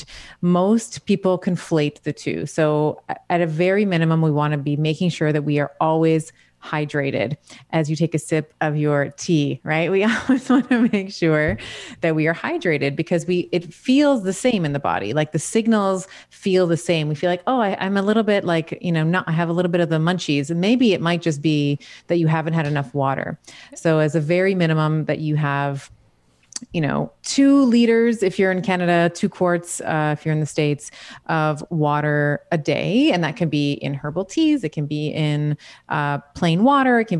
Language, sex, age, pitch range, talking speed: English, female, 30-49, 150-195 Hz, 210 wpm